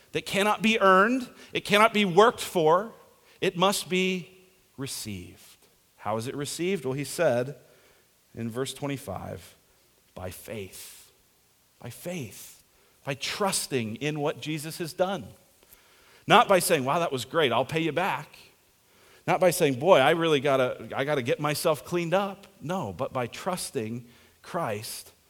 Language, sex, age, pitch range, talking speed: English, male, 40-59, 130-200 Hz, 150 wpm